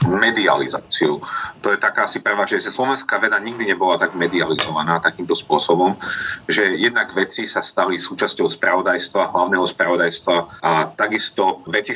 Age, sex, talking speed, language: 40-59, male, 135 wpm, Slovak